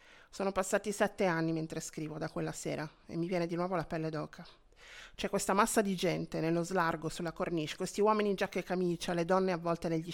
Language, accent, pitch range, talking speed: Italian, native, 165-200 Hz, 215 wpm